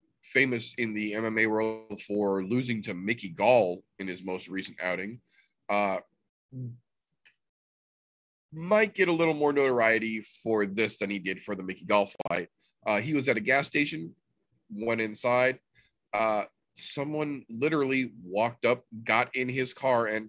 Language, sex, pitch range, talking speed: English, male, 110-150 Hz, 150 wpm